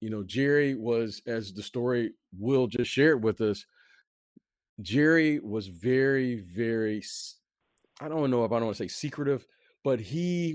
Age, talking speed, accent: 40-59, 160 wpm, American